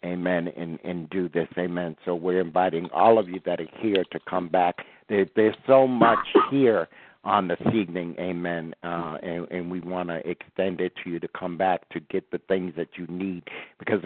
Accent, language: American, English